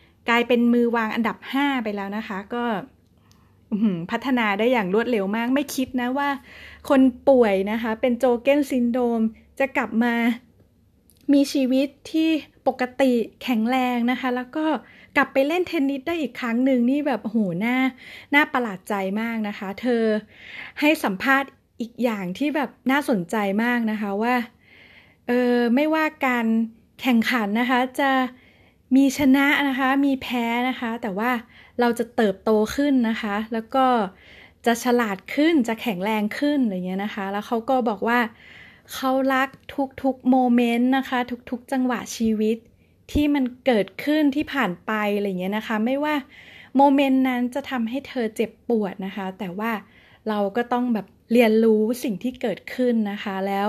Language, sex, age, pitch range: Thai, female, 20-39, 220-265 Hz